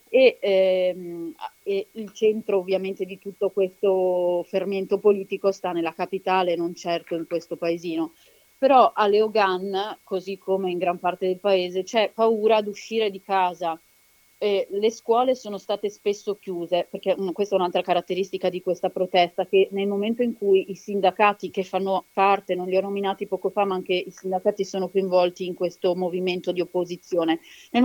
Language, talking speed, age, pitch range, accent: Italian, 170 wpm, 30-49, 180-205 Hz, native